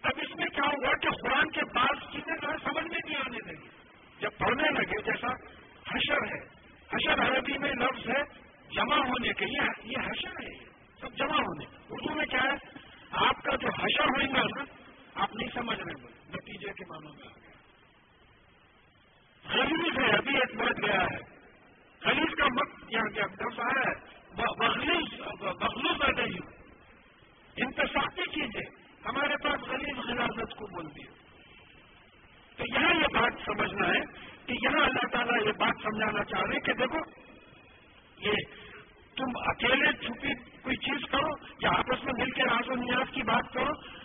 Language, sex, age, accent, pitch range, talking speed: English, male, 50-69, Indian, 230-285 Hz, 135 wpm